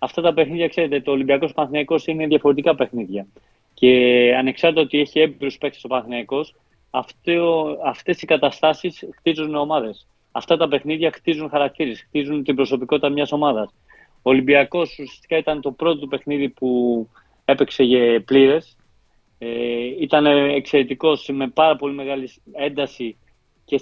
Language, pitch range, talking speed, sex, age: Greek, 130-155 Hz, 130 wpm, male, 30-49